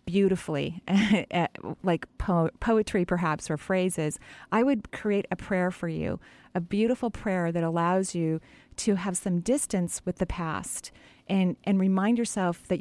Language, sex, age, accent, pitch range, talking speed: English, female, 40-59, American, 160-210 Hz, 145 wpm